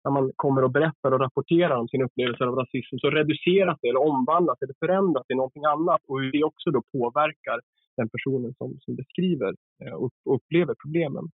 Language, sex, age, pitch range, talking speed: English, male, 30-49, 125-165 Hz, 190 wpm